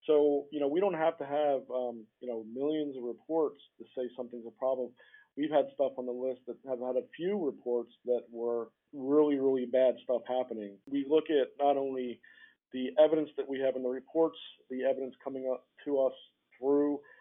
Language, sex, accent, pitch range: English, male, American, 125-150 Hz